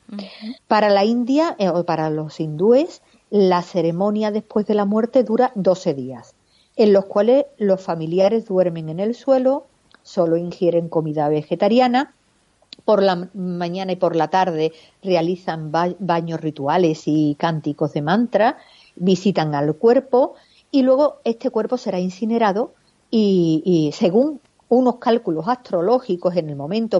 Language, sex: Spanish, female